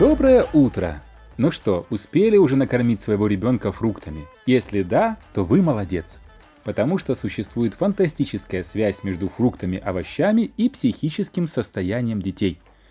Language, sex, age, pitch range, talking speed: Russian, male, 30-49, 100-155 Hz, 120 wpm